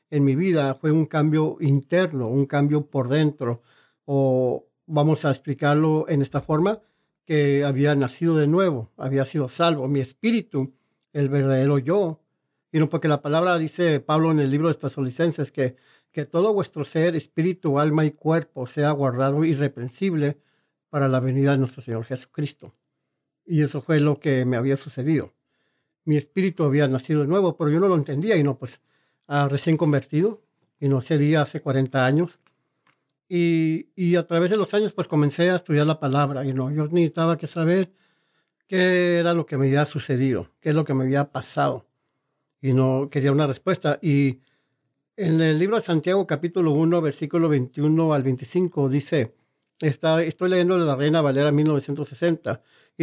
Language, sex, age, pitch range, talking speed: English, male, 50-69, 140-165 Hz, 175 wpm